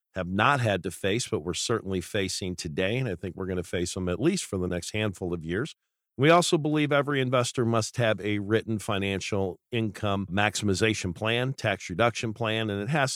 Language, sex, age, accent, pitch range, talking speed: English, male, 50-69, American, 95-115 Hz, 205 wpm